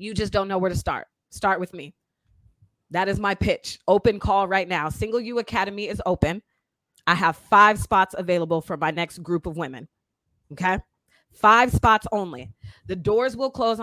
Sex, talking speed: female, 180 wpm